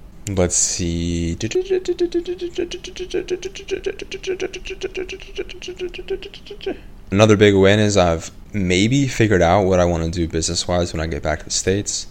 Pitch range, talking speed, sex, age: 85-110 Hz, 115 wpm, male, 20-39